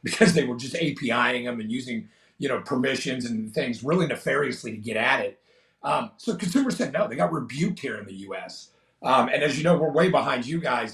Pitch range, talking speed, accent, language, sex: 145-215 Hz, 225 wpm, American, English, male